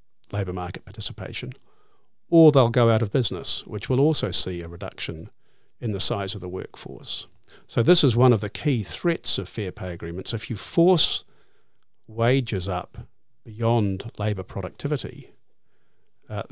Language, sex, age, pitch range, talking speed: English, male, 50-69, 95-125 Hz, 155 wpm